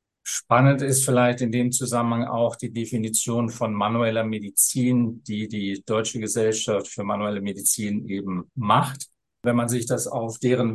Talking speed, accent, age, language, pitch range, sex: 150 wpm, German, 50-69, German, 115-135 Hz, male